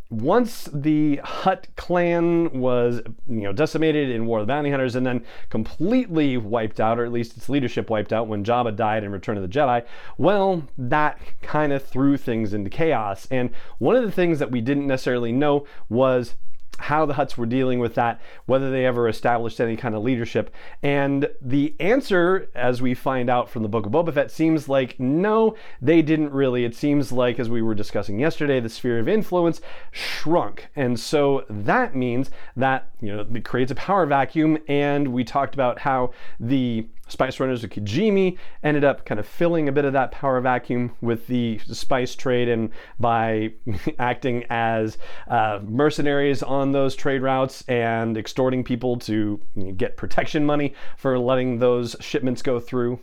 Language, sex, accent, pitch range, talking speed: English, male, American, 120-145 Hz, 180 wpm